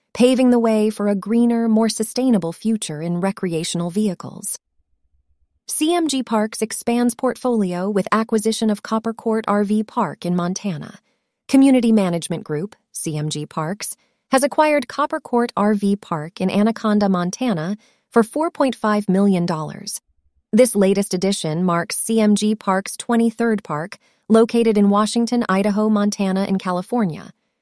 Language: English